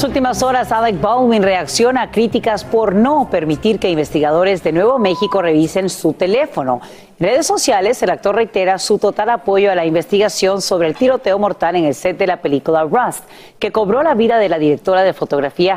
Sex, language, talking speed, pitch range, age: female, Spanish, 200 wpm, 170-230 Hz, 40-59